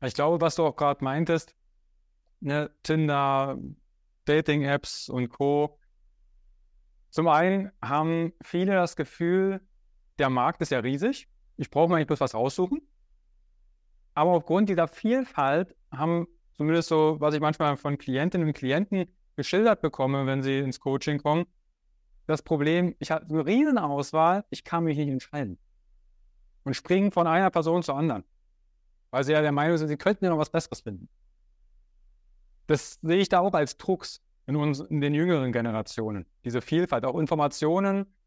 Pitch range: 125-170 Hz